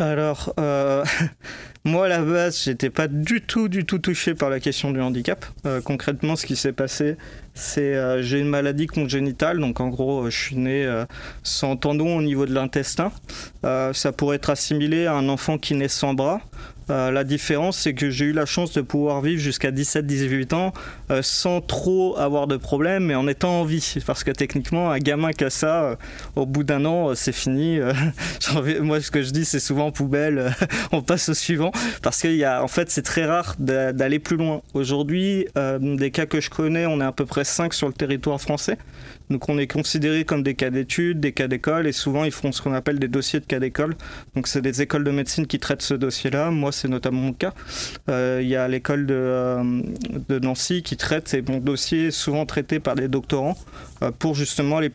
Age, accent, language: 30-49, French, French